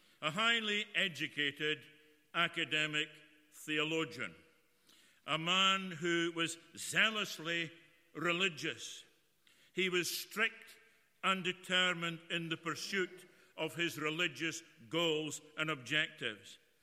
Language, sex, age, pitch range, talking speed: English, male, 60-79, 165-200 Hz, 90 wpm